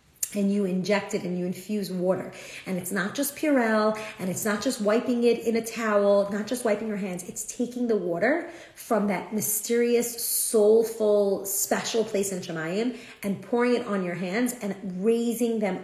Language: English